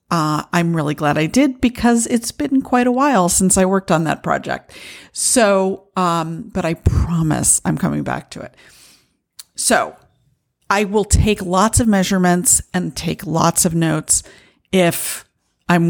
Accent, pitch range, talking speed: American, 145-195 Hz, 155 wpm